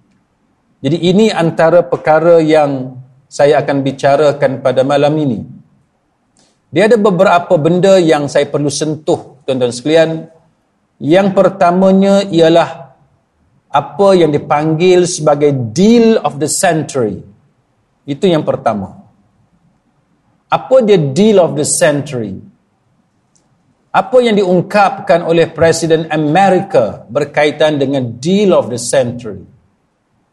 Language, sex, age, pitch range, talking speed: Malay, male, 50-69, 145-180 Hz, 105 wpm